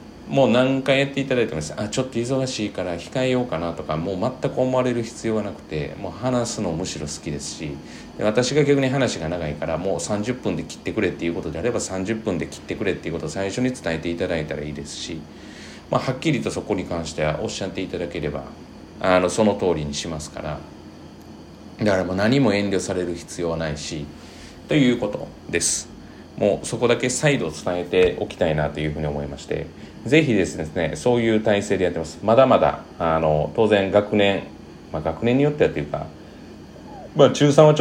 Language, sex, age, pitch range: Japanese, male, 40-59, 80-115 Hz